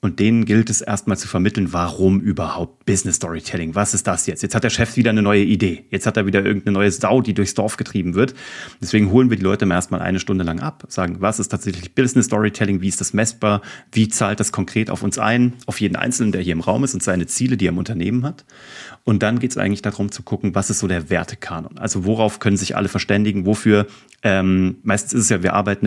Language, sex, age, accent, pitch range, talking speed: German, male, 30-49, German, 95-120 Hz, 245 wpm